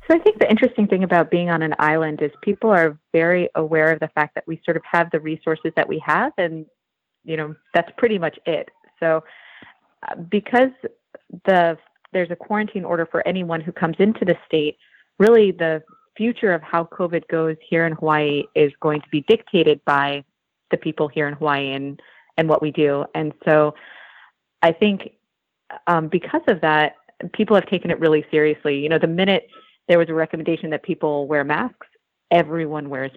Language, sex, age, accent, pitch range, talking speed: English, female, 30-49, American, 155-180 Hz, 190 wpm